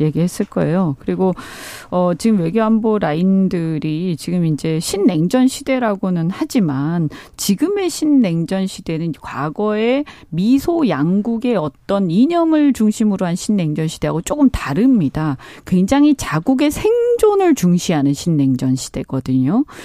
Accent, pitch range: native, 165-260 Hz